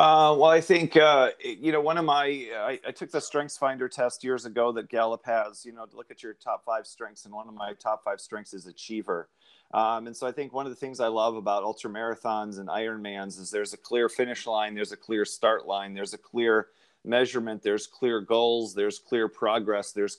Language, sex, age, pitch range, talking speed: English, male, 30-49, 110-130 Hz, 230 wpm